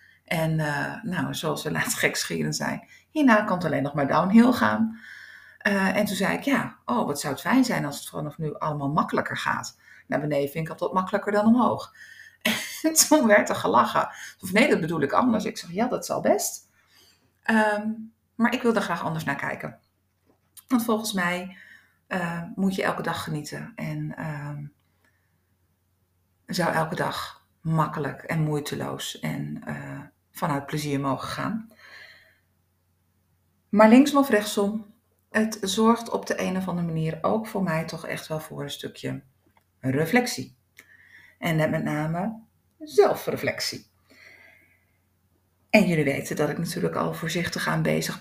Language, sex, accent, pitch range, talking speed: Dutch, female, Dutch, 125-210 Hz, 160 wpm